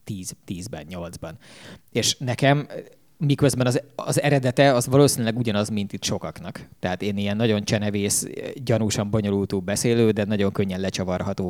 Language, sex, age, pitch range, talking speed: English, male, 20-39, 100-130 Hz, 140 wpm